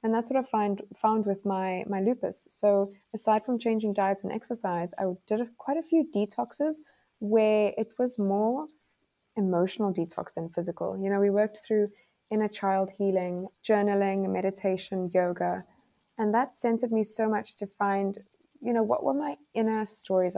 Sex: female